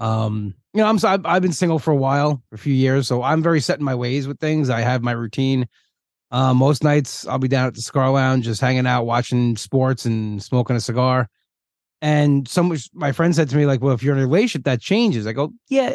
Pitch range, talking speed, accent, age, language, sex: 120-155 Hz, 255 wpm, American, 30-49, English, male